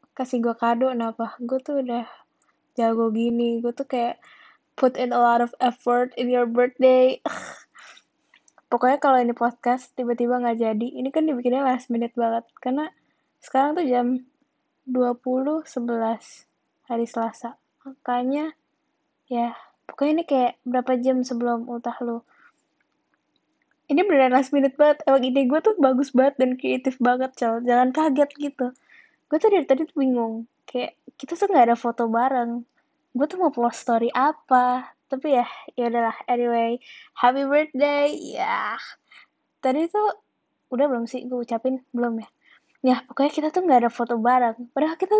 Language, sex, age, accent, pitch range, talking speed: Indonesian, female, 10-29, native, 240-285 Hz, 155 wpm